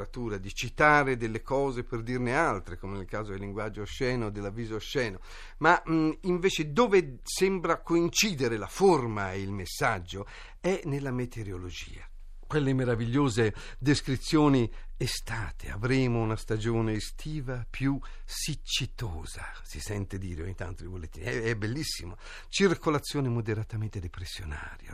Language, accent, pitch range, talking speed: Italian, native, 95-130 Hz, 125 wpm